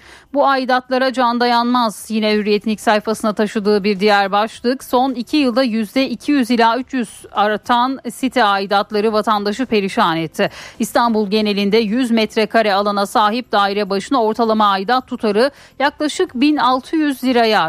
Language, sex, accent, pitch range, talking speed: Turkish, female, native, 205-260 Hz, 125 wpm